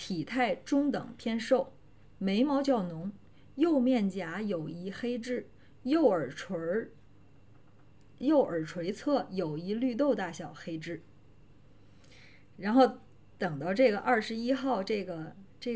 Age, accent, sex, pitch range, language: 20-39, native, female, 170-245 Hz, Chinese